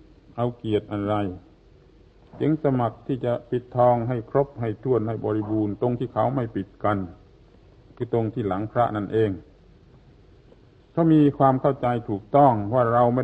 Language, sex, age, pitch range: Thai, male, 60-79, 110-135 Hz